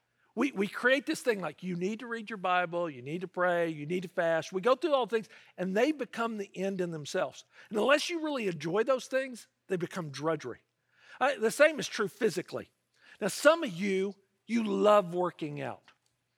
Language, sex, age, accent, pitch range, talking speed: English, male, 50-69, American, 175-240 Hz, 200 wpm